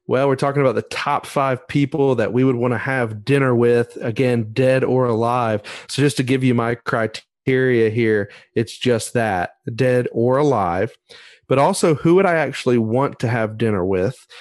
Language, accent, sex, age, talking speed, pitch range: English, American, male, 30-49, 185 wpm, 115-135 Hz